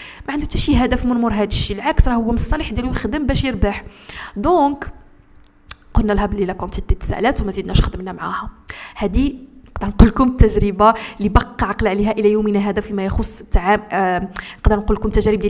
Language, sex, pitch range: Arabic, female, 195-235 Hz